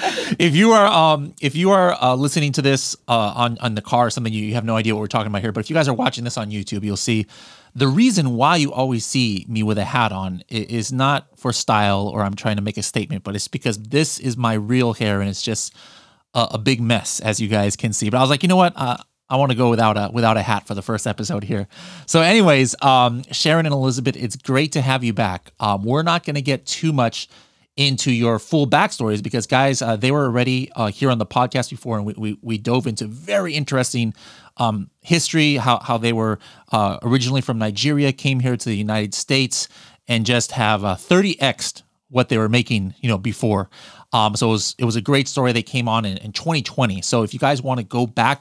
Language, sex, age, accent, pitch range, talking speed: English, male, 30-49, American, 110-140 Hz, 245 wpm